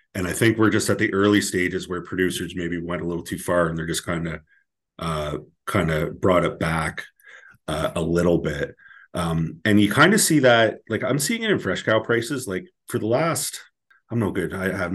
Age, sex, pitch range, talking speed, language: 30-49, male, 85-100 Hz, 225 wpm, English